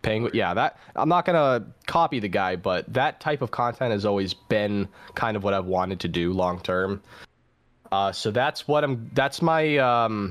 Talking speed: 200 wpm